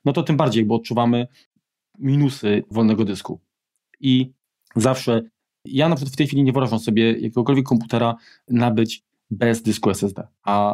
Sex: male